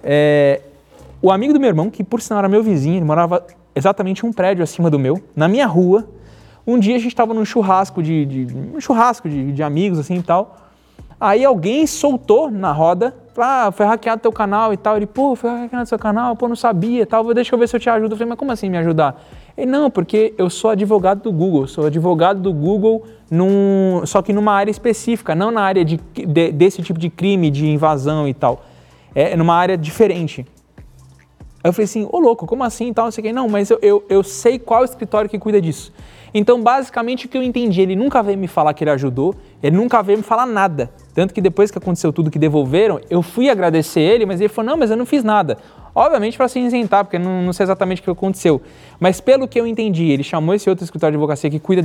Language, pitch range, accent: Portuguese, 165-230 Hz, Brazilian